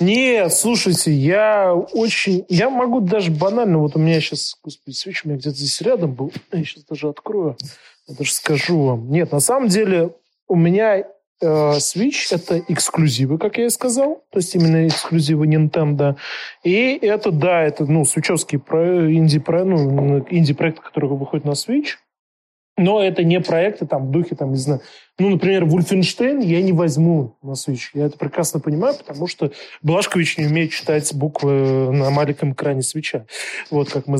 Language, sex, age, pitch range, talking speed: Russian, male, 20-39, 150-185 Hz, 165 wpm